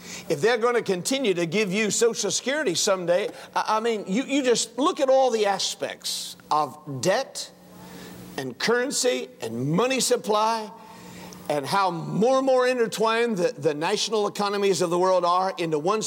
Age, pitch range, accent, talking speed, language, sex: 50-69, 170-235 Hz, American, 165 wpm, English, male